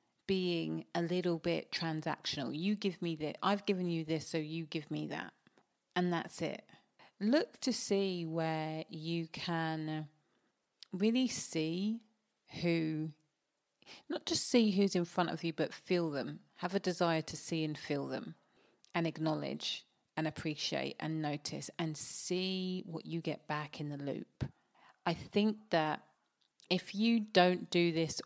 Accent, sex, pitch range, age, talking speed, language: British, female, 155-185 Hz, 30-49, 155 wpm, English